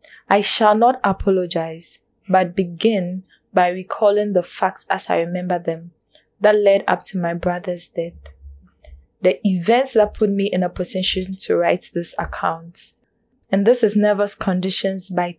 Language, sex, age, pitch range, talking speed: English, female, 10-29, 175-210 Hz, 150 wpm